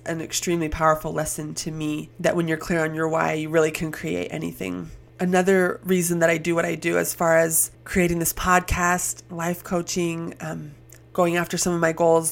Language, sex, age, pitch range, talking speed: English, female, 20-39, 155-175 Hz, 200 wpm